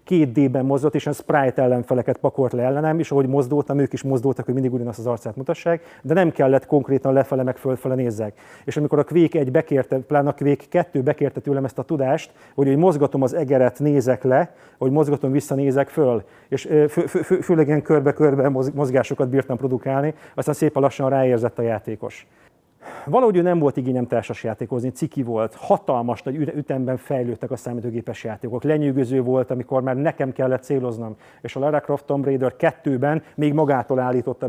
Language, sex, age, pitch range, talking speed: Hungarian, male, 30-49, 125-145 Hz, 175 wpm